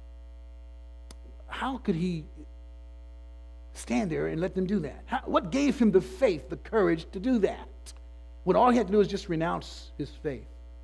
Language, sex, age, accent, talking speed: English, male, 50-69, American, 170 wpm